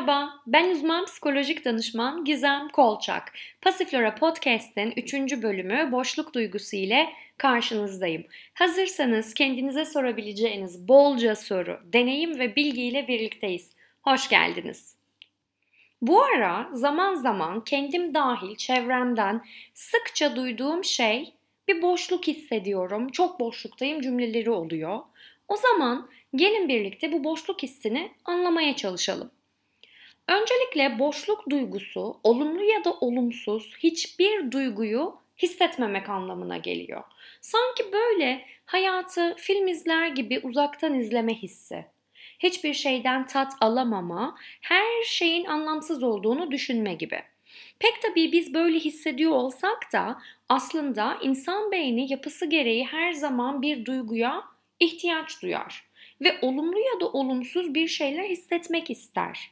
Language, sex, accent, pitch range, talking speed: Turkish, female, native, 240-335 Hz, 110 wpm